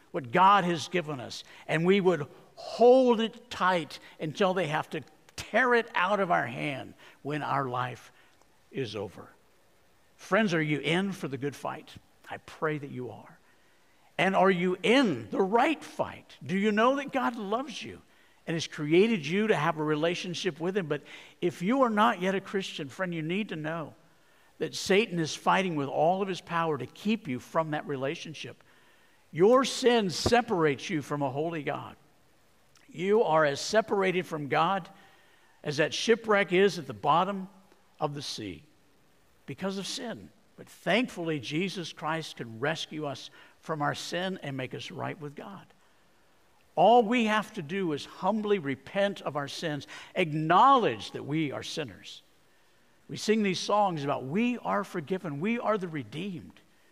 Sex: male